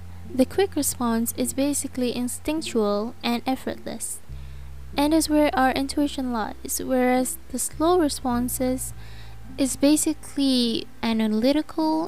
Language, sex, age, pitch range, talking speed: English, female, 10-29, 210-275 Hz, 105 wpm